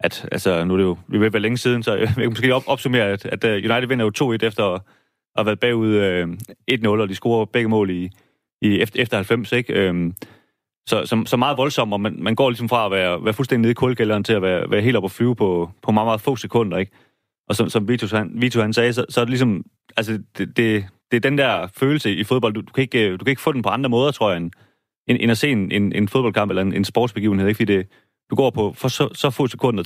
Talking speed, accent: 270 wpm, native